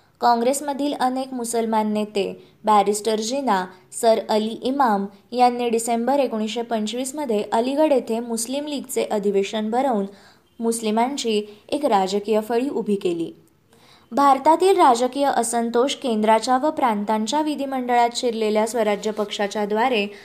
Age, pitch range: 20-39, 210-255 Hz